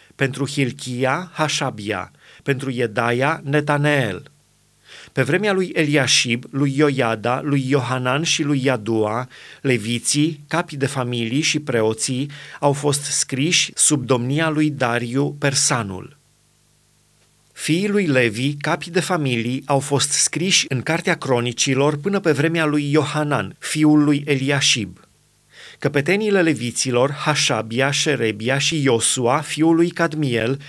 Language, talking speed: Romanian, 115 wpm